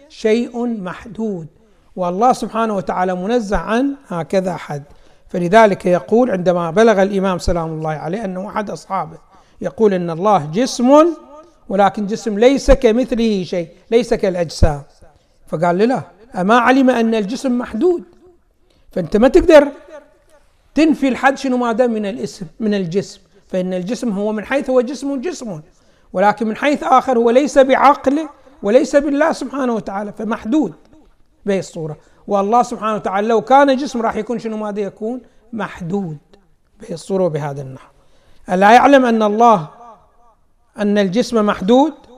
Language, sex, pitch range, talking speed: Arabic, male, 190-255 Hz, 135 wpm